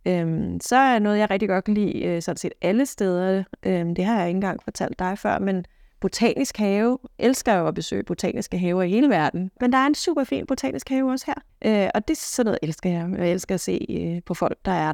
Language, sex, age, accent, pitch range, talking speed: Danish, female, 30-49, native, 180-230 Hz, 245 wpm